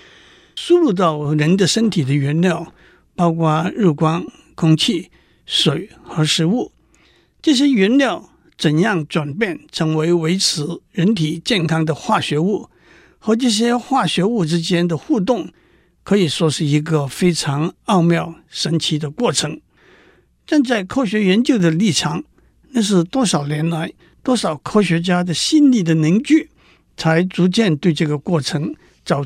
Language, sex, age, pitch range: Chinese, male, 60-79, 160-205 Hz